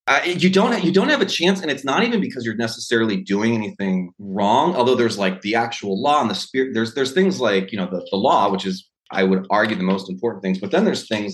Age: 30-49